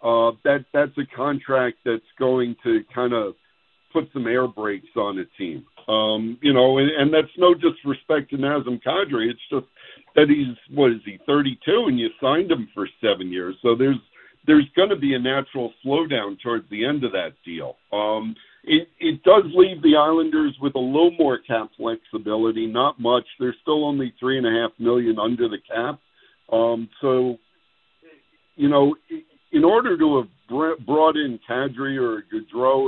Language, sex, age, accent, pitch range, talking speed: English, male, 50-69, American, 120-155 Hz, 170 wpm